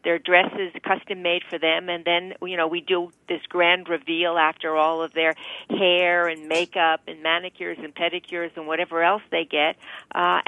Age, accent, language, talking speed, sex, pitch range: 50-69, American, English, 180 wpm, female, 170-205 Hz